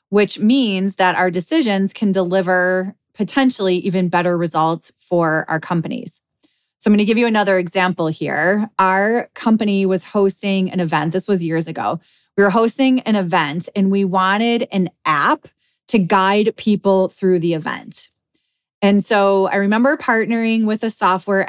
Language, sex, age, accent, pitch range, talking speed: English, female, 20-39, American, 185-225 Hz, 155 wpm